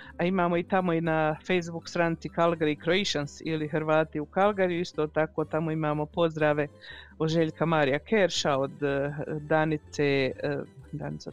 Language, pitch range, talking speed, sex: Croatian, 150-185 Hz, 130 wpm, female